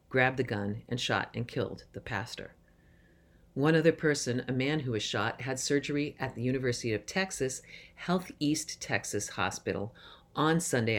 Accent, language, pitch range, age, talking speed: American, English, 110-145 Hz, 50-69, 165 wpm